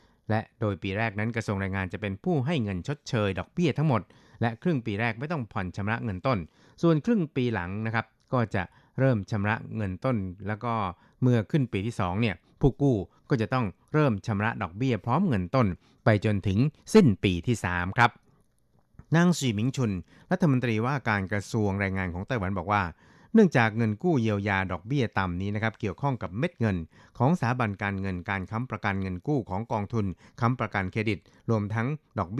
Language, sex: Thai, male